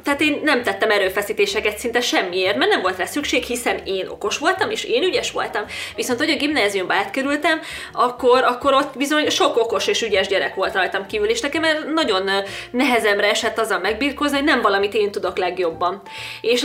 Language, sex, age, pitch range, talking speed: Hungarian, female, 20-39, 210-295 Hz, 185 wpm